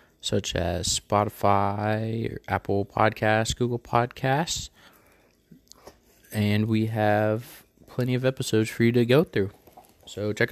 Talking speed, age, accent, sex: 115 wpm, 20-39, American, male